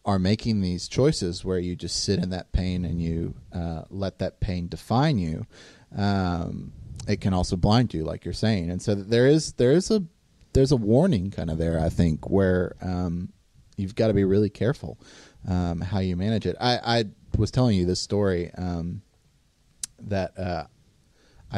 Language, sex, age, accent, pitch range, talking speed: English, male, 30-49, American, 90-115 Hz, 185 wpm